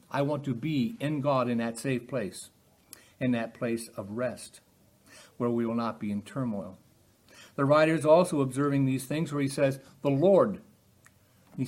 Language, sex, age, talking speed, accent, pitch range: English, male, 60-79, 180 wpm, American, 115-165 Hz